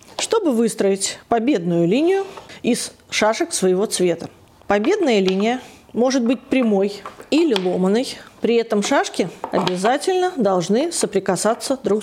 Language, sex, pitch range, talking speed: Russian, female, 195-295 Hz, 110 wpm